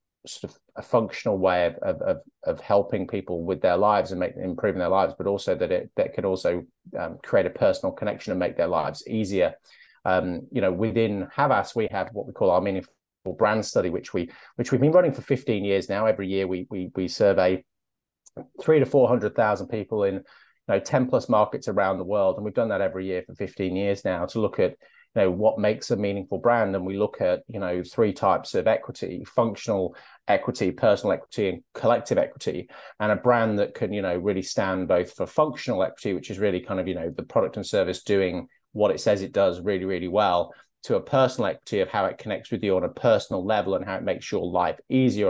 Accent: British